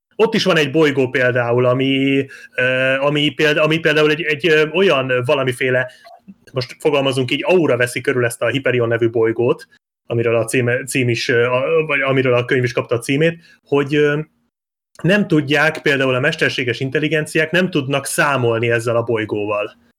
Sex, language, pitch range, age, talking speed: male, Hungarian, 125-155 Hz, 30-49, 145 wpm